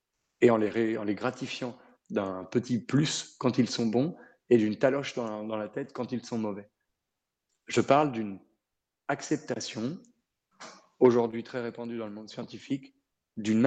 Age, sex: 40-59, male